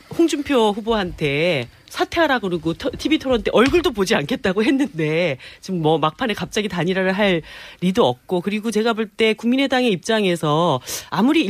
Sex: female